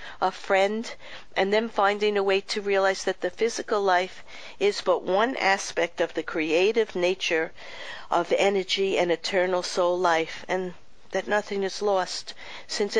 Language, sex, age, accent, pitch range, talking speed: English, female, 50-69, American, 180-220 Hz, 150 wpm